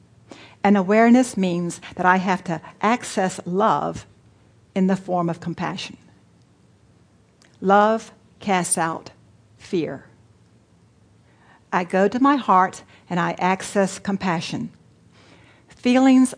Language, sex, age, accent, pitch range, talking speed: English, female, 60-79, American, 175-225 Hz, 105 wpm